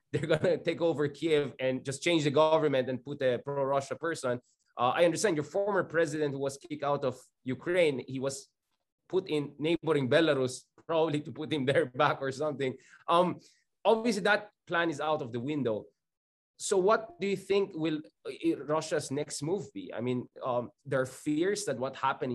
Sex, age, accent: male, 20-39, Filipino